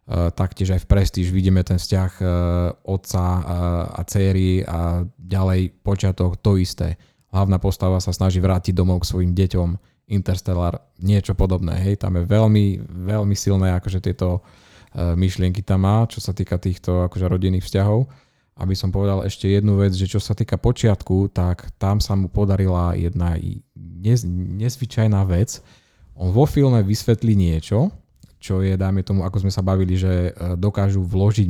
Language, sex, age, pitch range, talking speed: Slovak, male, 20-39, 90-105 Hz, 150 wpm